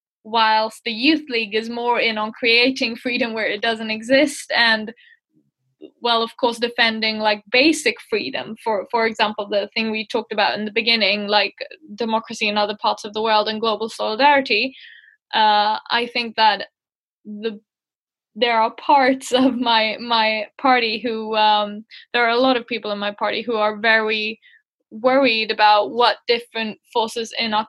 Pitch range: 215-245 Hz